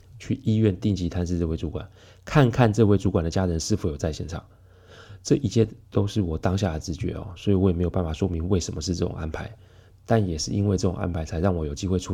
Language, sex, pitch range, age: Chinese, male, 90-105 Hz, 20-39